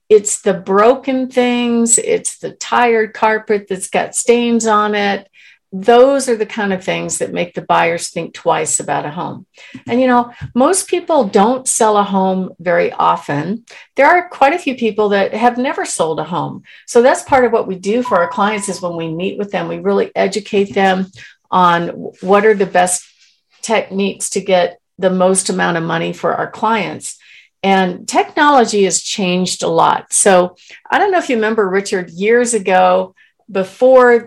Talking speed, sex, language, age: 180 wpm, female, English, 50-69